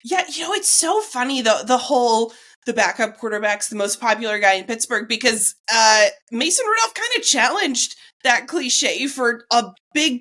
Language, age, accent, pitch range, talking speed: English, 20-39, American, 195-250 Hz, 175 wpm